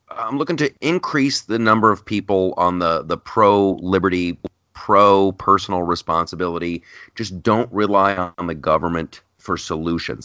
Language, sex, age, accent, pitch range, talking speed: English, male, 30-49, American, 90-125 Hz, 140 wpm